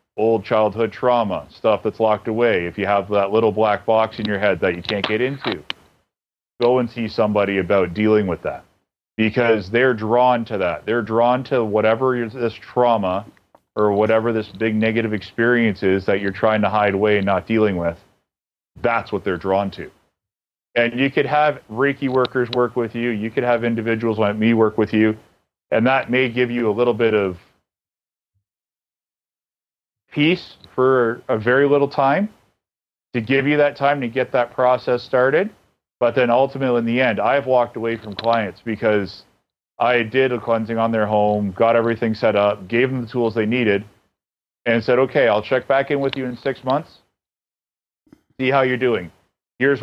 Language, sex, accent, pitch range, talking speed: English, male, American, 105-130 Hz, 185 wpm